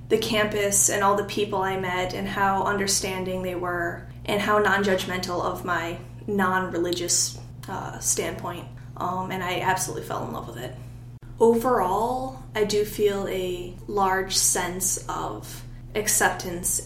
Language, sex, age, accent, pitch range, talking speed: English, female, 20-39, American, 140-195 Hz, 140 wpm